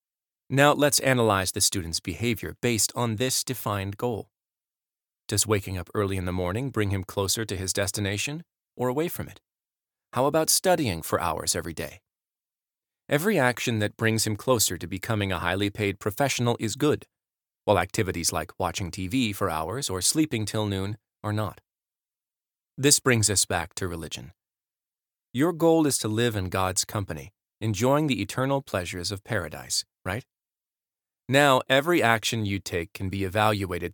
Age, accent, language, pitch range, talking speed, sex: 30-49, American, English, 95-120 Hz, 160 wpm, male